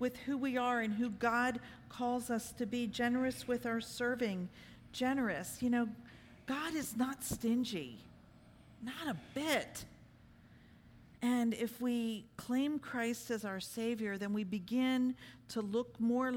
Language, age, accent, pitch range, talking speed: English, 50-69, American, 215-255 Hz, 145 wpm